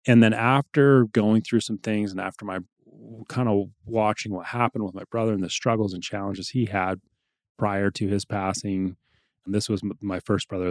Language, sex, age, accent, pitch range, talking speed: English, male, 30-49, American, 95-115 Hz, 195 wpm